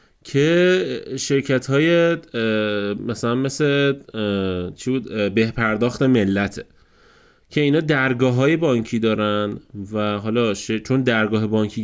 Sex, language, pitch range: male, Persian, 105-145 Hz